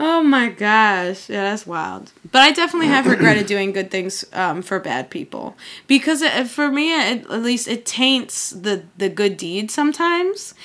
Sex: female